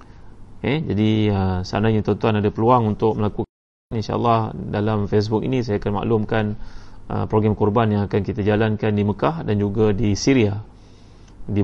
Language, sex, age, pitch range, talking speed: Malay, male, 30-49, 100-110 Hz, 155 wpm